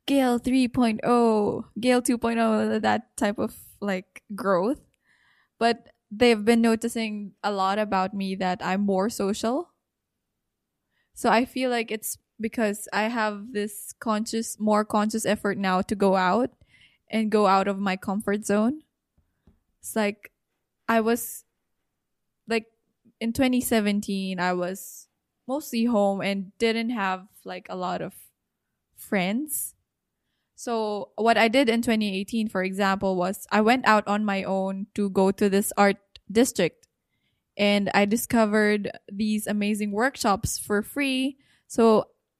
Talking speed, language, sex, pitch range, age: 135 wpm, English, female, 200-230 Hz, 10-29